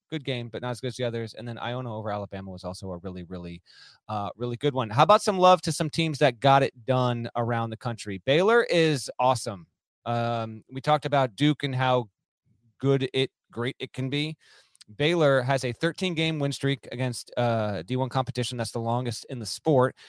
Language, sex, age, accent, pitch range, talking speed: English, male, 30-49, American, 120-150 Hz, 205 wpm